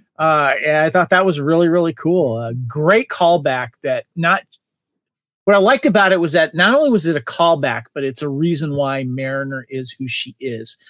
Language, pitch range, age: English, 130-160 Hz, 40-59